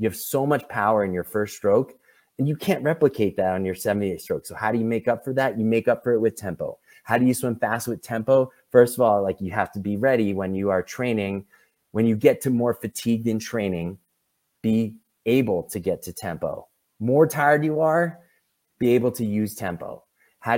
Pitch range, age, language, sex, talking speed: 105-135 Hz, 30-49, English, male, 225 wpm